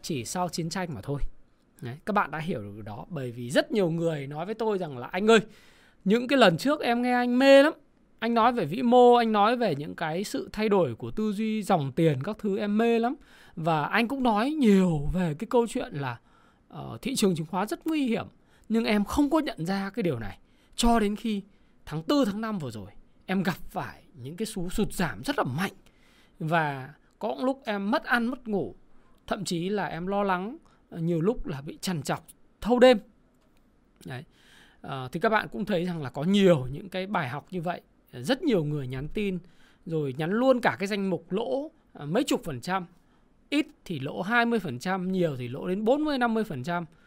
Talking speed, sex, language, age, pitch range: 220 wpm, male, Vietnamese, 20-39, 165-230 Hz